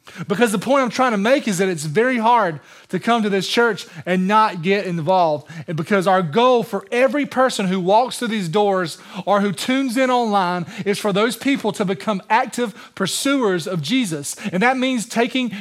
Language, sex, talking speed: English, male, 200 wpm